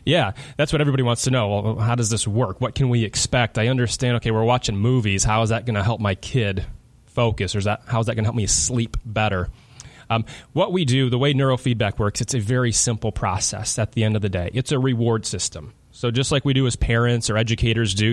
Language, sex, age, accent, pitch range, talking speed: English, male, 30-49, American, 105-125 Hz, 240 wpm